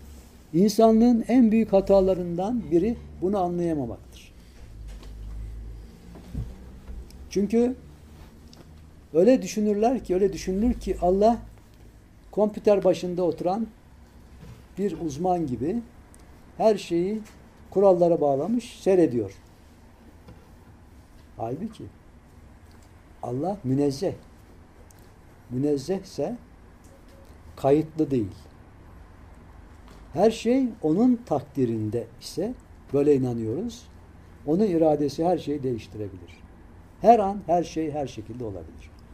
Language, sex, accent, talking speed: Turkish, male, native, 80 wpm